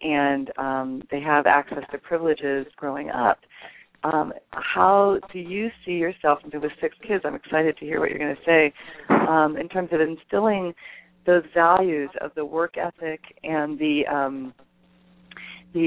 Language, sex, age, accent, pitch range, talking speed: English, female, 40-59, American, 150-180 Hz, 165 wpm